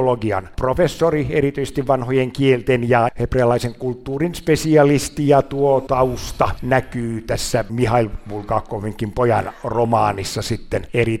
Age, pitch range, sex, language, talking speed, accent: 60-79, 110-130 Hz, male, Finnish, 100 wpm, native